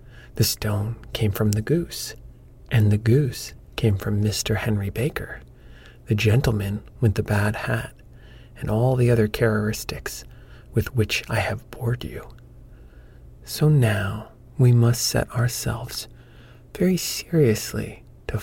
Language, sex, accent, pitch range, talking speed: English, male, American, 110-125 Hz, 130 wpm